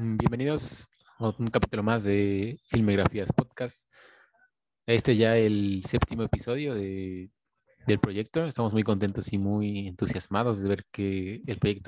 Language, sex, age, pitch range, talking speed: Spanish, male, 20-39, 105-125 Hz, 135 wpm